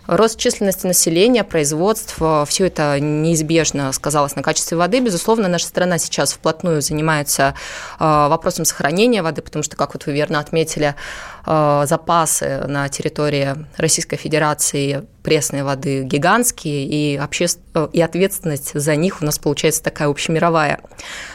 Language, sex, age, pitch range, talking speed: Russian, female, 20-39, 150-175 Hz, 125 wpm